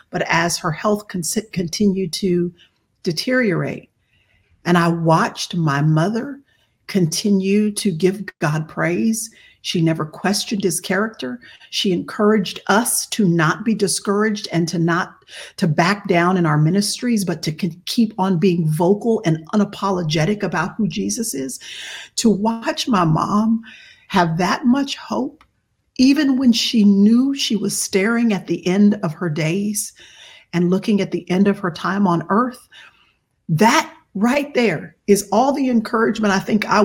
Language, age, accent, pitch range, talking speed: English, 50-69, American, 175-225 Hz, 150 wpm